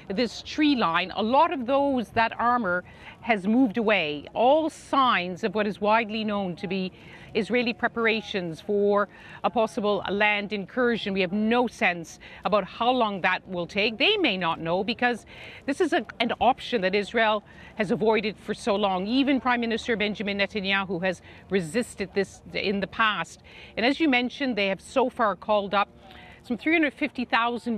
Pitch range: 200-255 Hz